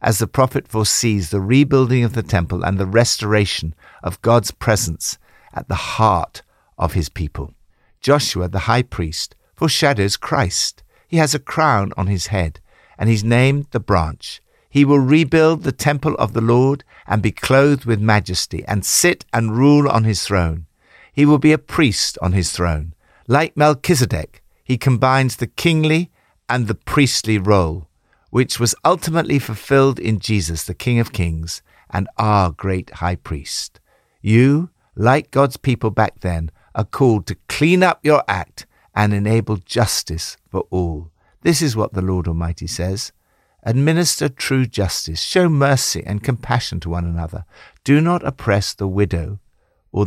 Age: 60-79